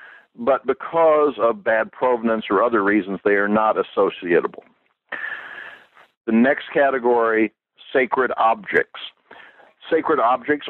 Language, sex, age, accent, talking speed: English, male, 60-79, American, 105 wpm